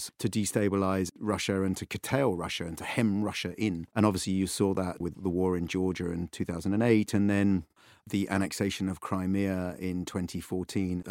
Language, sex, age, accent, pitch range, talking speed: English, male, 40-59, British, 90-105 Hz, 175 wpm